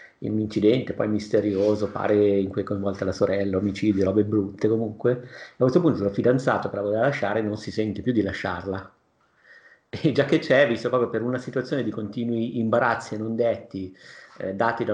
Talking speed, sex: 195 wpm, male